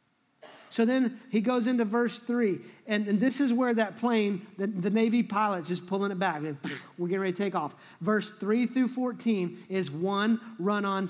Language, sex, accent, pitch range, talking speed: English, male, American, 180-230 Hz, 195 wpm